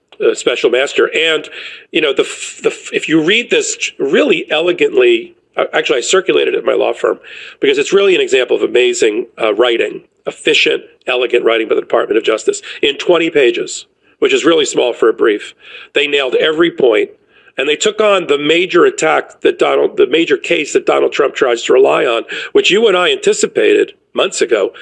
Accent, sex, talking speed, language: American, male, 190 wpm, English